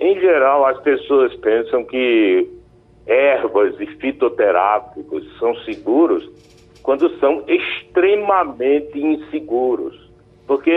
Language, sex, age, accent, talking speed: Portuguese, male, 60-79, Brazilian, 90 wpm